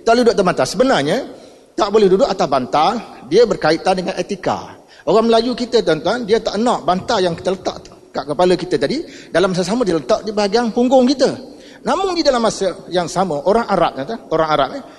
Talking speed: 205 wpm